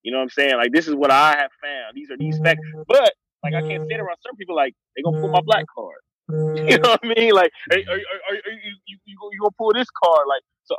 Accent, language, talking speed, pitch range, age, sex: American, English, 280 wpm, 145-235 Hz, 20-39, male